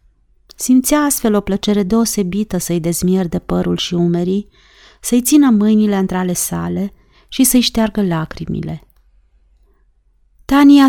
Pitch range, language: 175-245 Hz, Romanian